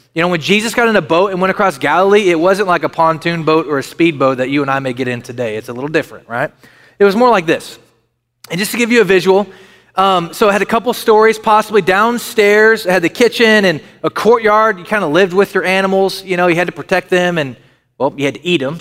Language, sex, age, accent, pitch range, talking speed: English, male, 30-49, American, 165-215 Hz, 265 wpm